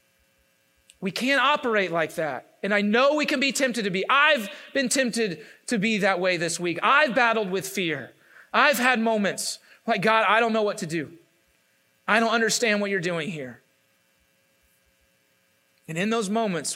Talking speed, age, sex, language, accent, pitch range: 175 wpm, 30-49, male, English, American, 145-205 Hz